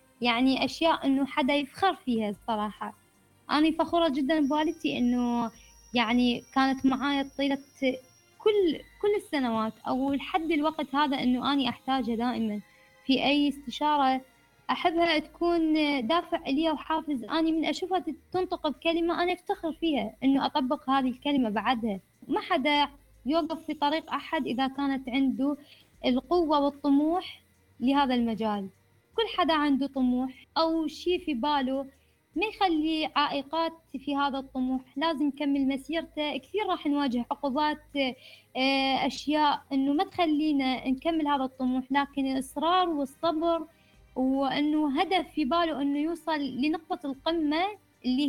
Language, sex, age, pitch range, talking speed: Arabic, female, 20-39, 260-320 Hz, 125 wpm